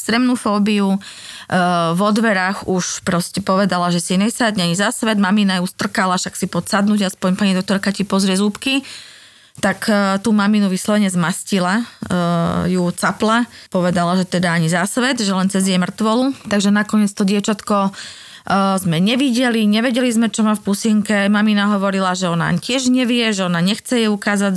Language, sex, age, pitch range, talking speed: Slovak, female, 20-39, 185-220 Hz, 175 wpm